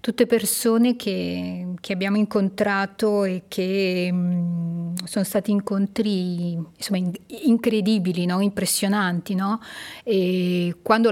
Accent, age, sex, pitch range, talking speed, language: native, 30-49, female, 175-205 Hz, 110 wpm, Italian